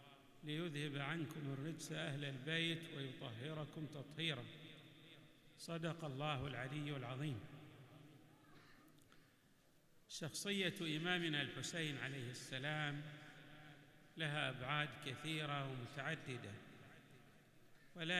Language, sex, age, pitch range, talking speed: Arabic, male, 50-69, 150-170 Hz, 70 wpm